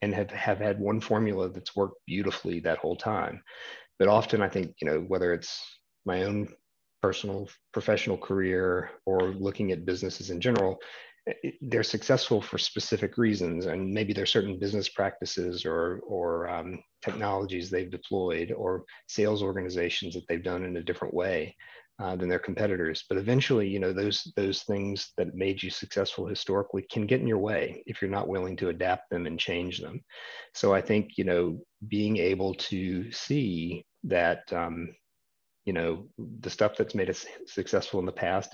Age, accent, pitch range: 40-59, American, 90-105 Hz